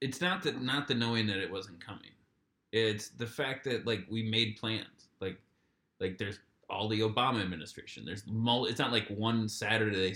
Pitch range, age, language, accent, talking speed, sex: 105-120 Hz, 20-39, English, American, 195 wpm, male